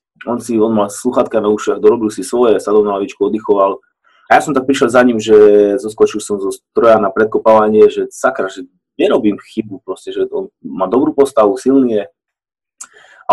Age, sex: 20-39, male